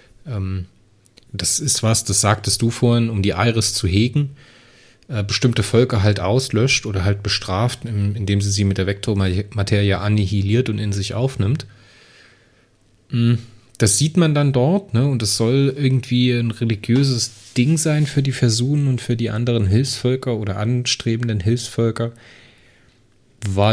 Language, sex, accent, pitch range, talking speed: German, male, German, 100-125 Hz, 140 wpm